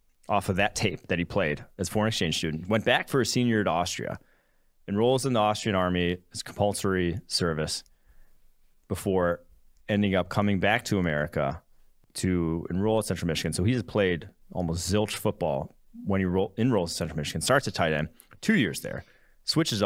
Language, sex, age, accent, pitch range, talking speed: English, male, 30-49, American, 85-105 Hz, 180 wpm